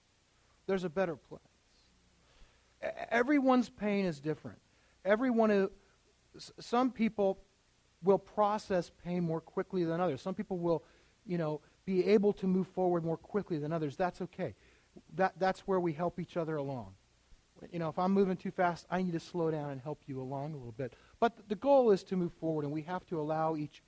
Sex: male